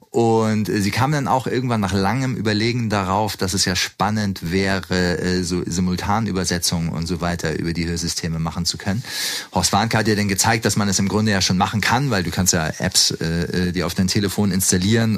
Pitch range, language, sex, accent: 95-110 Hz, German, male, German